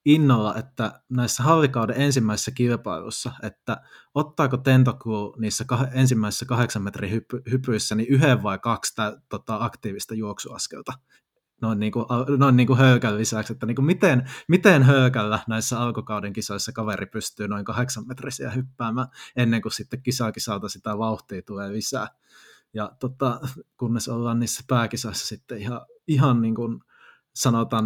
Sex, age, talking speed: male, 20-39, 140 wpm